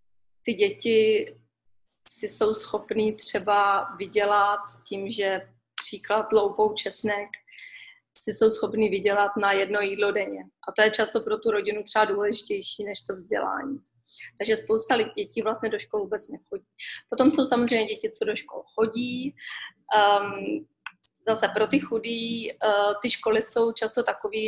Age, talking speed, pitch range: 20-39, 145 wpm, 205-230 Hz